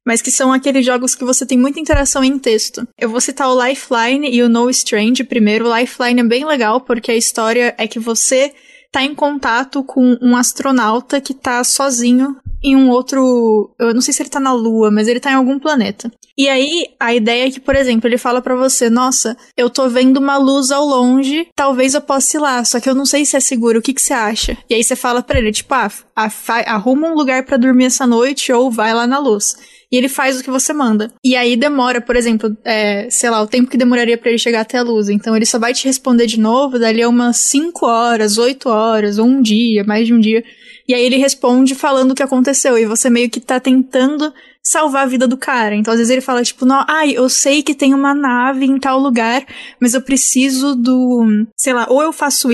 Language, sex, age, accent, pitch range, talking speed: Portuguese, female, 20-39, Brazilian, 235-270 Hz, 240 wpm